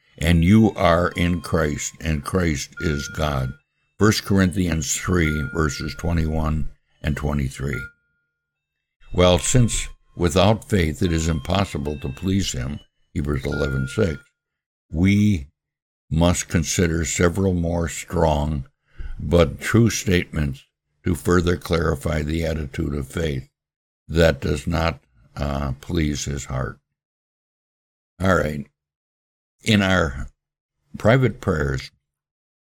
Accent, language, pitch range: American, English, 70-90 Hz